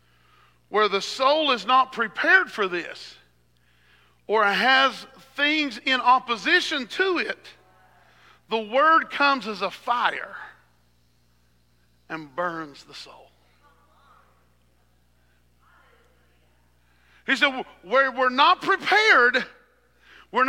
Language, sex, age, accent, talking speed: English, male, 50-69, American, 95 wpm